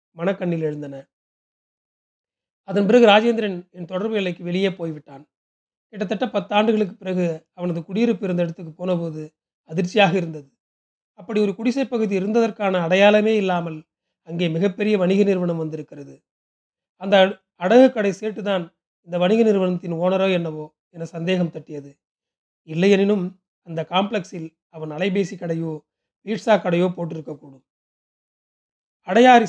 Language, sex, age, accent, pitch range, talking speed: Tamil, male, 40-59, native, 170-210 Hz, 110 wpm